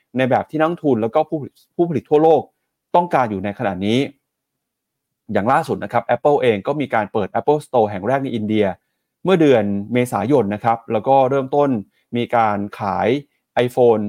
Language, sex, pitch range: Thai, male, 115-155 Hz